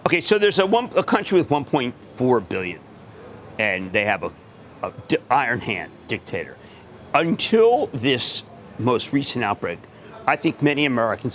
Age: 40-59